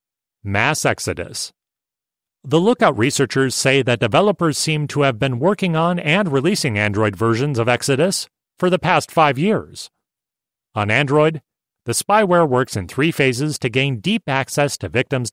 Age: 40-59